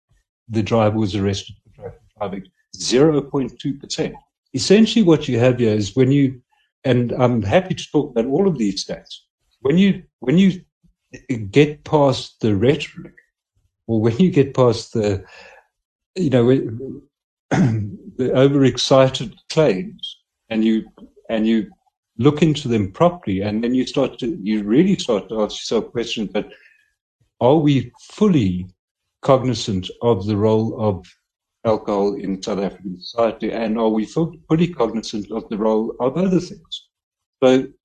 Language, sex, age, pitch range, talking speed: English, male, 60-79, 110-150 Hz, 145 wpm